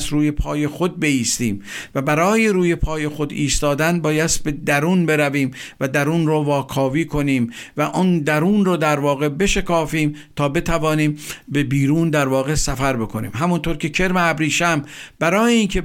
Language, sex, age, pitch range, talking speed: Persian, male, 50-69, 145-165 Hz, 150 wpm